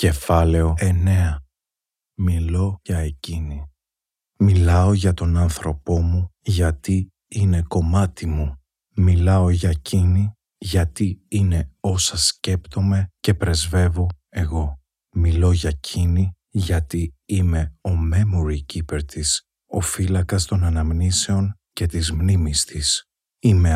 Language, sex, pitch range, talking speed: Greek, male, 80-95 Hz, 105 wpm